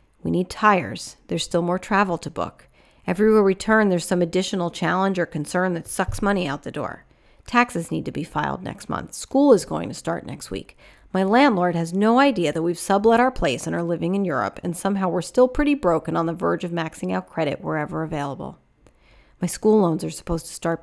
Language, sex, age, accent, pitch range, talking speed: English, female, 40-59, American, 165-200 Hz, 215 wpm